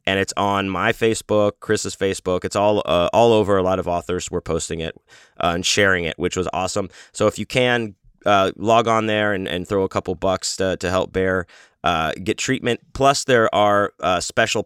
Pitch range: 90-110 Hz